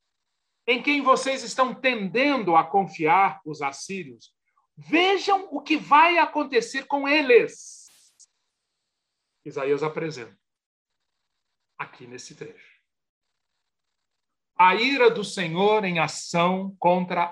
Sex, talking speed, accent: male, 95 wpm, Brazilian